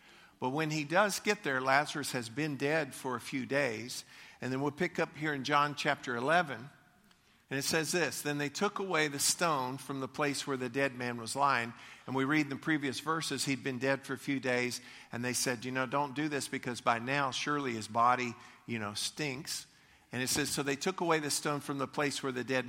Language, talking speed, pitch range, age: English, 235 wpm, 135-180 Hz, 50-69